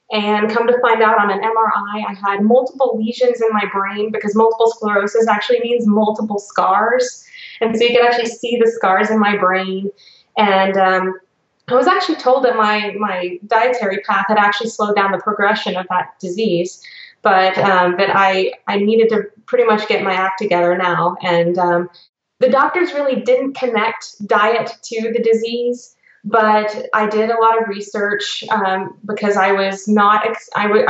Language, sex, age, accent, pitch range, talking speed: English, female, 20-39, American, 195-230 Hz, 180 wpm